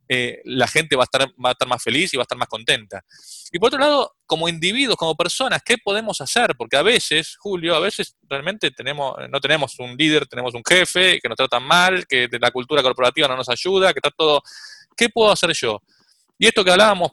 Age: 20-39